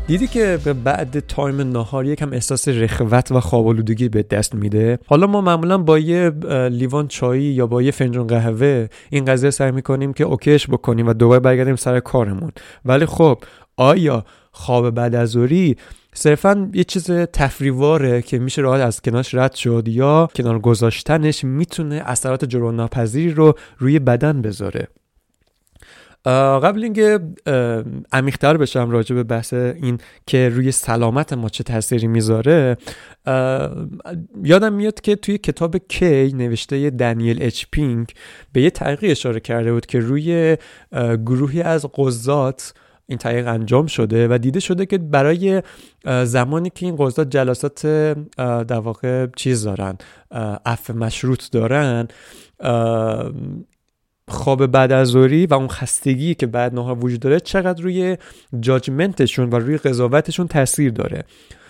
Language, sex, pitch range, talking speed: Persian, male, 120-155 Hz, 145 wpm